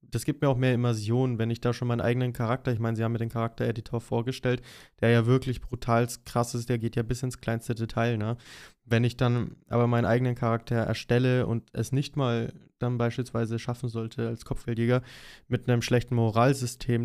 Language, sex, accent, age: German, male, German, 20-39